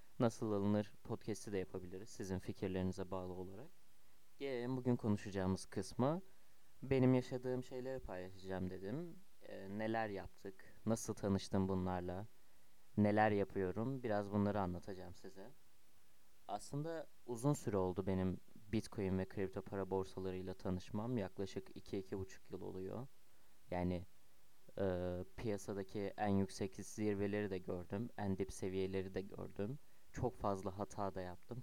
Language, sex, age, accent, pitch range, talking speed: Turkish, male, 30-49, native, 95-120 Hz, 120 wpm